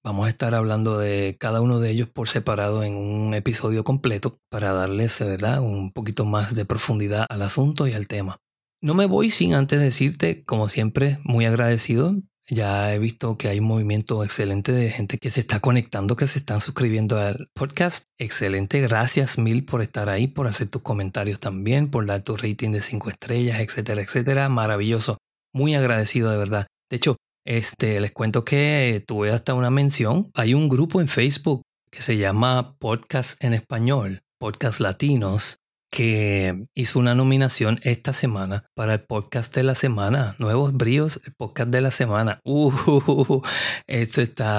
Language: Spanish